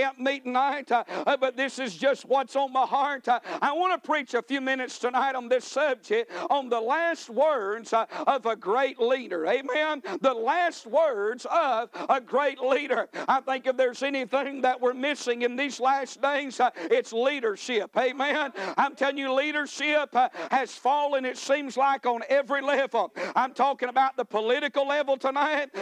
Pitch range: 250-290 Hz